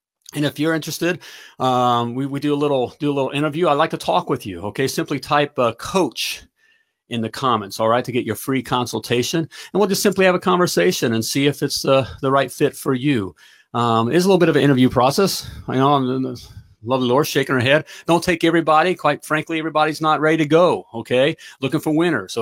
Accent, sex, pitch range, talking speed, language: American, male, 125-160 Hz, 230 wpm, English